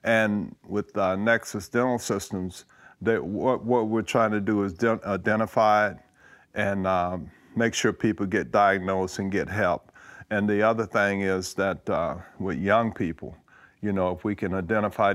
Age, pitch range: 50-69, 90-105 Hz